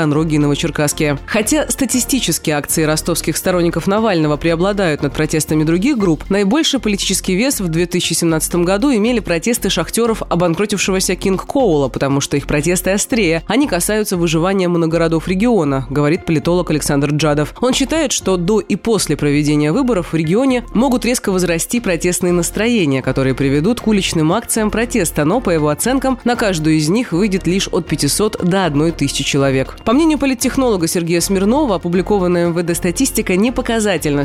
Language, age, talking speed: Russian, 20-39, 150 wpm